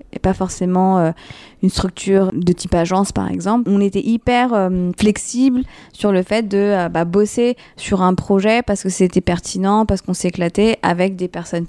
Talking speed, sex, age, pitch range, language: 180 wpm, female, 20-39, 175-205 Hz, French